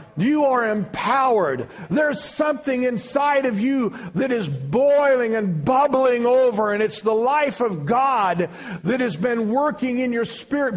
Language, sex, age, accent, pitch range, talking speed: English, male, 50-69, American, 220-280 Hz, 150 wpm